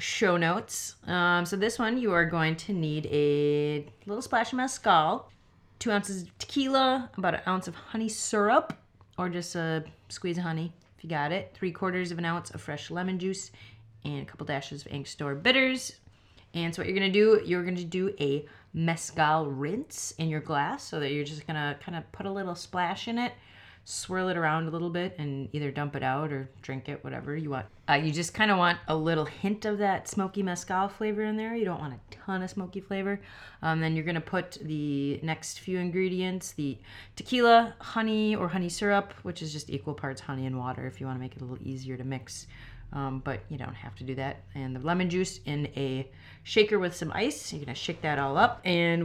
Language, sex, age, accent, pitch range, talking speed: English, female, 30-49, American, 145-185 Hz, 230 wpm